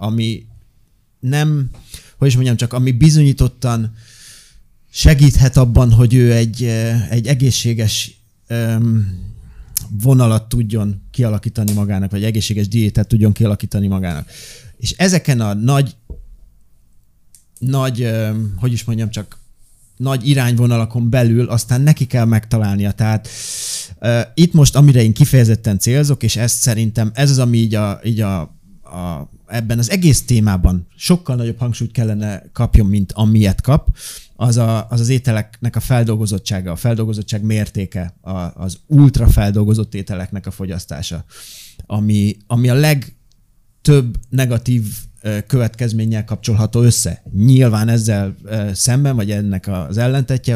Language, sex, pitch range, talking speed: Hungarian, male, 105-125 Hz, 120 wpm